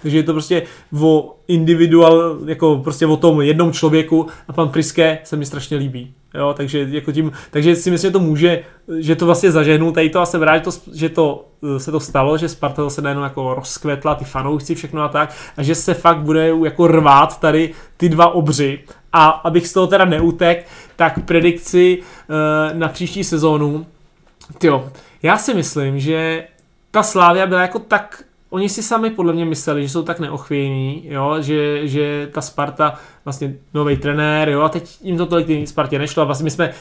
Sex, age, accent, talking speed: male, 20-39, native, 190 wpm